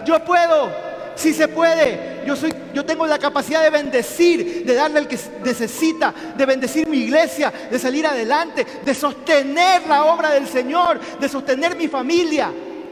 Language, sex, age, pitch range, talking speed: Spanish, male, 30-49, 190-295 Hz, 165 wpm